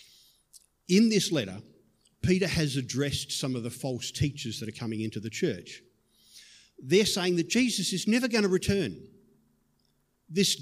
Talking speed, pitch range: 155 wpm, 130-185 Hz